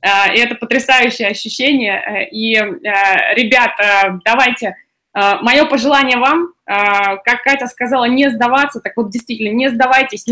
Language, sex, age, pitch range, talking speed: Russian, female, 20-39, 205-250 Hz, 110 wpm